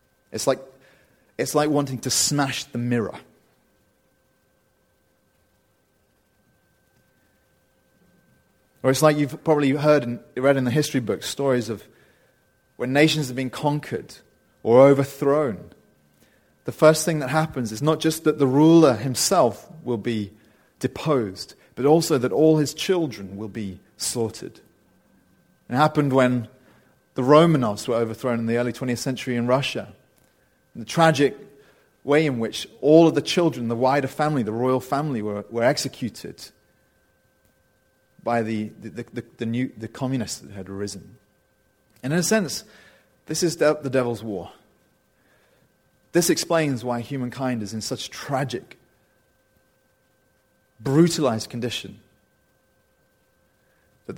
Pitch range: 120-150 Hz